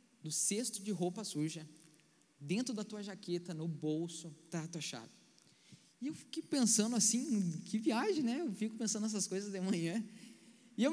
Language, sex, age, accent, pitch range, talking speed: Portuguese, male, 20-39, Brazilian, 160-220 Hz, 175 wpm